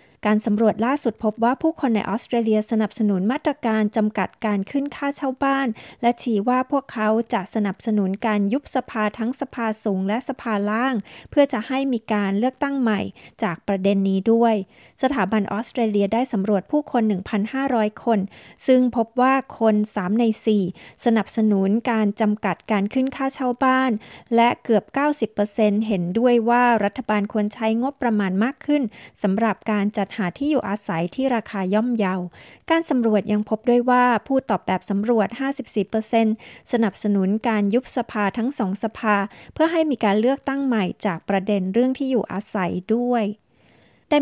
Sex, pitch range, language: female, 205-250 Hz, Thai